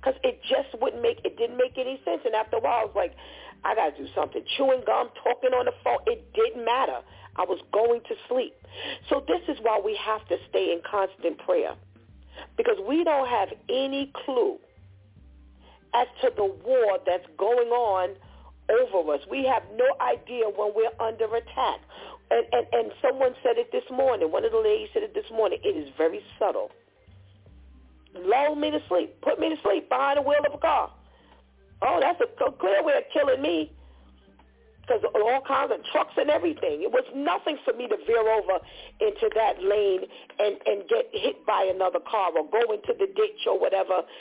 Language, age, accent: English, 40-59, American